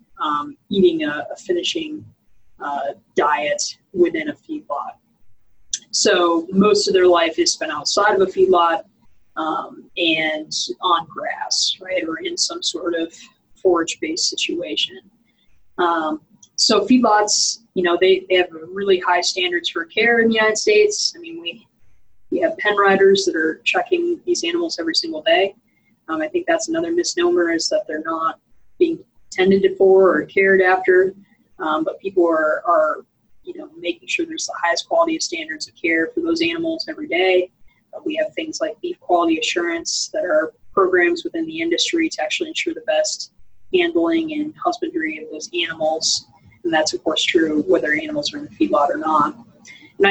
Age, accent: 20-39, American